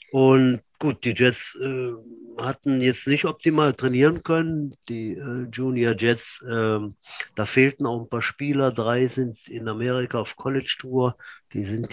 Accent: German